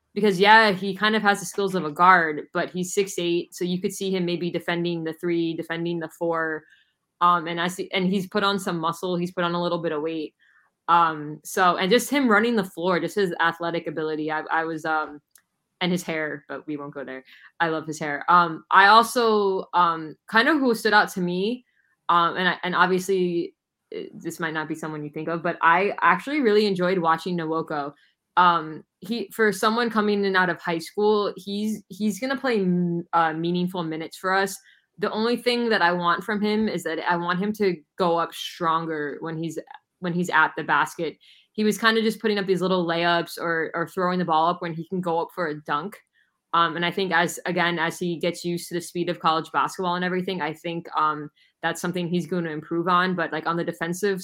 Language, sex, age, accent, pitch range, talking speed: English, female, 10-29, American, 165-195 Hz, 225 wpm